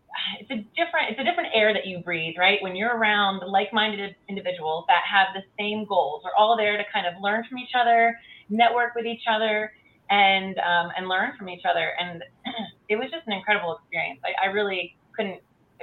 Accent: American